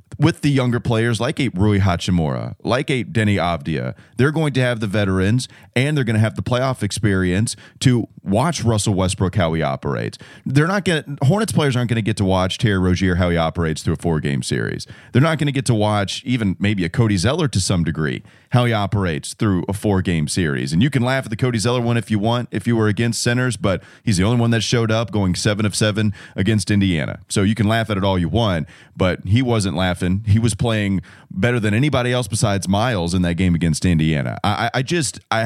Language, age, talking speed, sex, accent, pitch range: English, 30-49, 235 wpm, male, American, 95-125 Hz